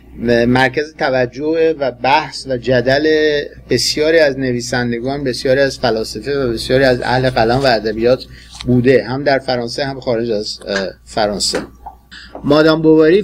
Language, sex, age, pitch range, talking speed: Persian, male, 50-69, 130-160 Hz, 130 wpm